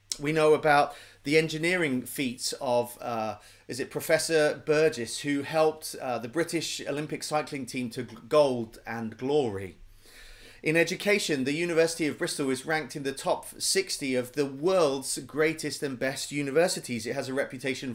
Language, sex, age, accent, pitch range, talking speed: English, male, 30-49, British, 125-155 Hz, 155 wpm